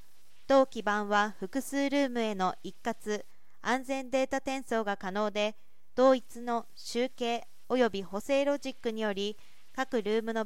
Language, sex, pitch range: Japanese, female, 210-265 Hz